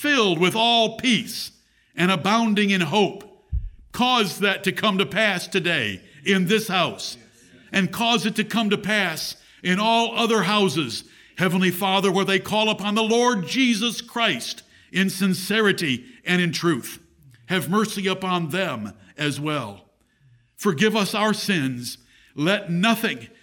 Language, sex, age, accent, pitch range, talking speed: English, male, 60-79, American, 165-220 Hz, 145 wpm